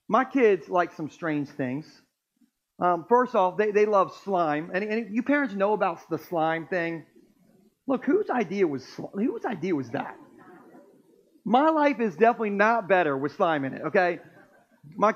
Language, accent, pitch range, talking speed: Ukrainian, American, 175-235 Hz, 165 wpm